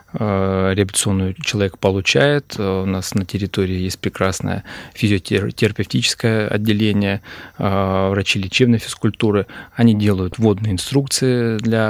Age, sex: 20-39, male